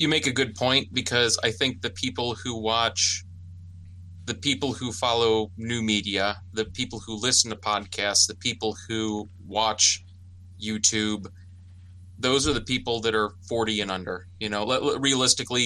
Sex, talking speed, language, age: male, 155 wpm, English, 30-49